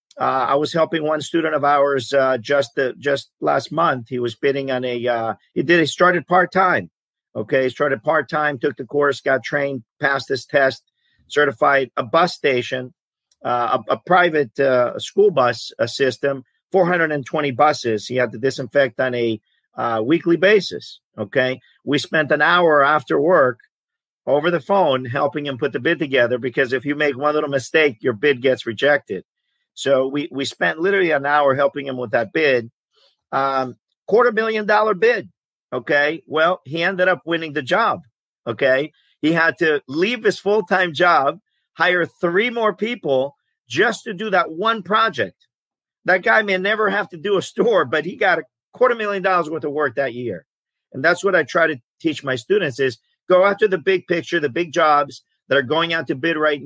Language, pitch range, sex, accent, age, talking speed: English, 135-175 Hz, male, American, 50-69, 190 wpm